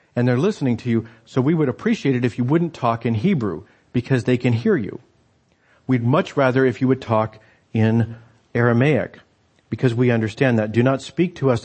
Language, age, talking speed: English, 50-69, 200 wpm